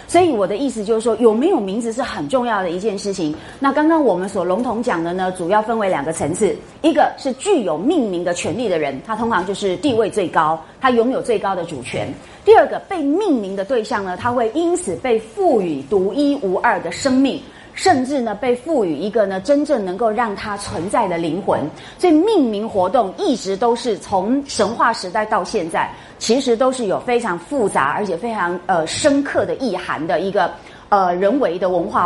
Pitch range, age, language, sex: 190-275 Hz, 30-49, Chinese, female